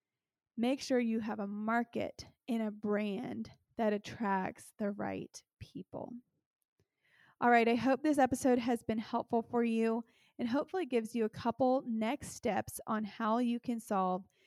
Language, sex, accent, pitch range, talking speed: English, female, American, 215-245 Hz, 160 wpm